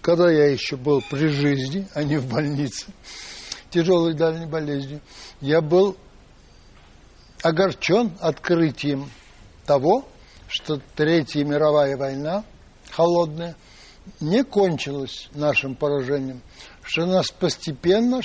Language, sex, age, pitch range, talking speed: Russian, male, 60-79, 145-190 Hz, 100 wpm